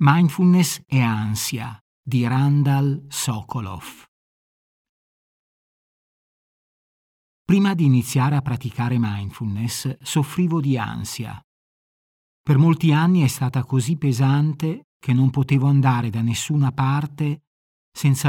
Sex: male